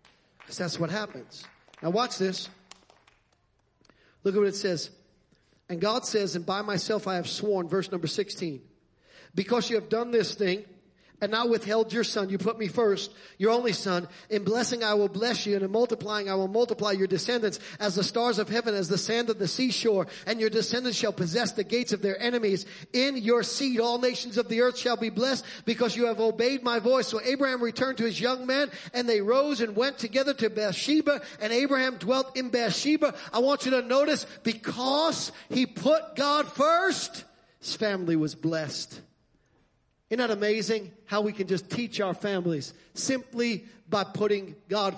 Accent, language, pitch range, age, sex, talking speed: American, English, 200-255 Hz, 40-59, male, 190 wpm